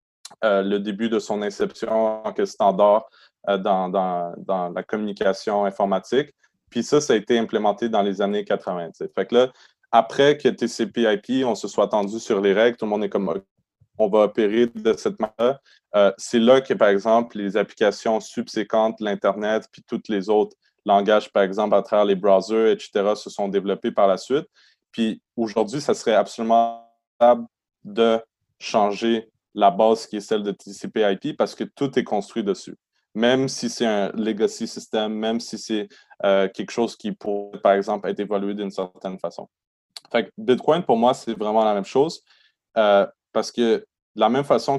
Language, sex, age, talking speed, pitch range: French, male, 20-39, 180 wpm, 100-120 Hz